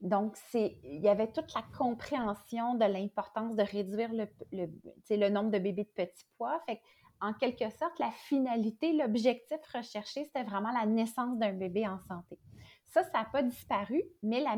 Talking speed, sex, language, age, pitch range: 170 wpm, female, French, 30-49, 200-245 Hz